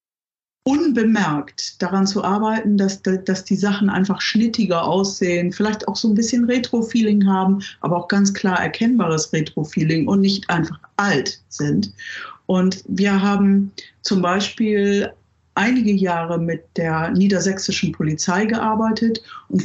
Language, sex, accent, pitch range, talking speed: German, female, German, 180-215 Hz, 135 wpm